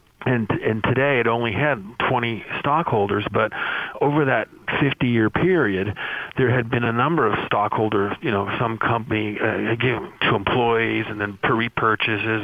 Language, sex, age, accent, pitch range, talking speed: English, male, 40-59, American, 105-125 Hz, 155 wpm